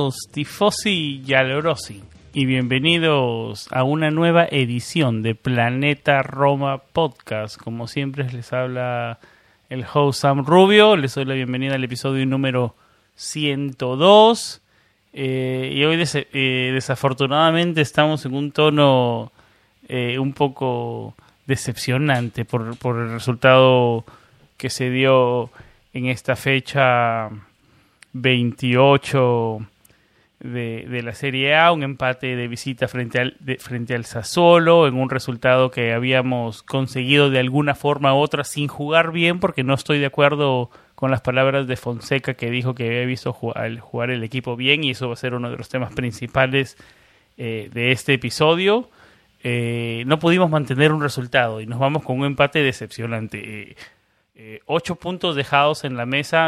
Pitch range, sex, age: 120-145 Hz, male, 30-49